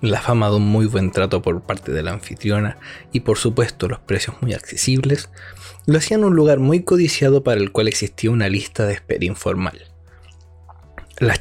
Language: Spanish